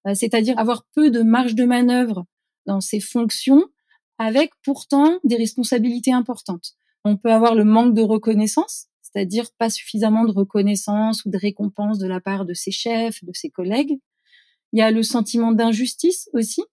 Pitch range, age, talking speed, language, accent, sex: 205-250 Hz, 30-49, 165 wpm, French, French, female